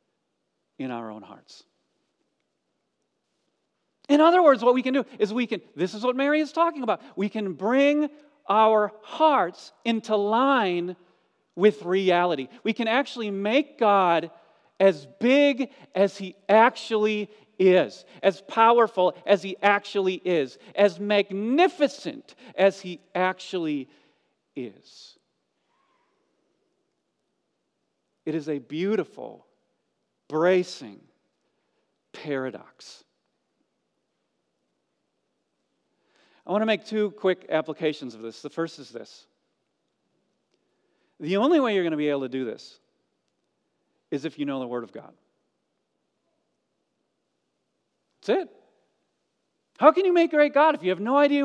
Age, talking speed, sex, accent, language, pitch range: 40-59, 120 wpm, male, American, English, 175-275 Hz